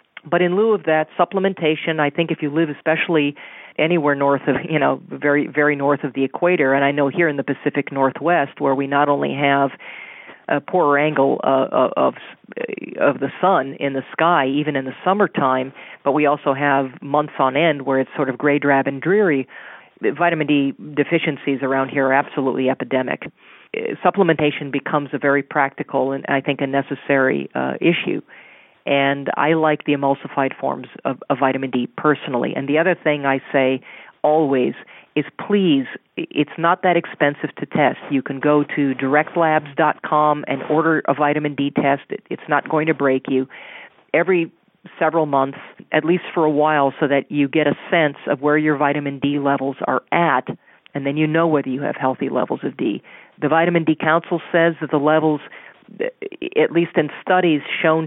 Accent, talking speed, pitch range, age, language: American, 180 wpm, 140-160 Hz, 40-59, English